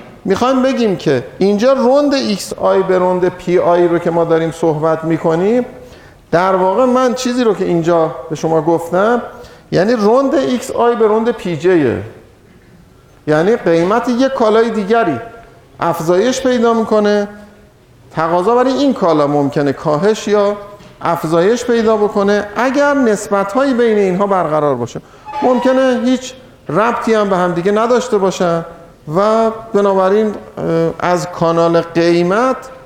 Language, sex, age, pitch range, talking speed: Persian, male, 50-69, 165-225 Hz, 135 wpm